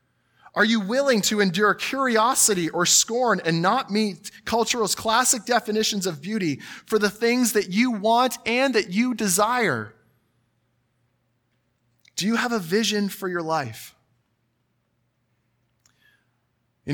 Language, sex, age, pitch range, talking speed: English, male, 20-39, 120-205 Hz, 125 wpm